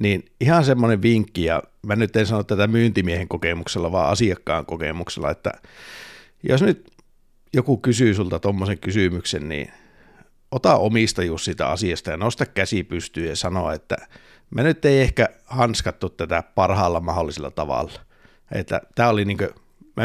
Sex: male